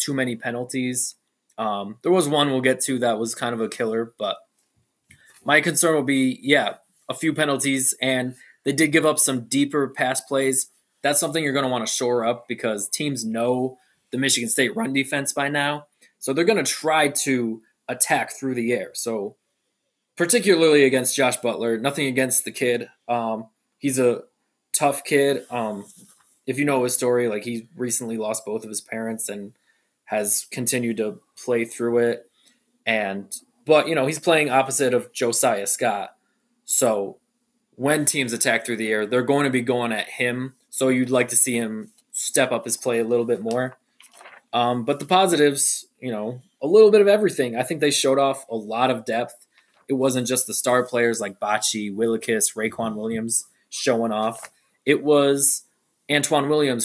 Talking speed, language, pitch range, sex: 185 wpm, English, 120-145 Hz, male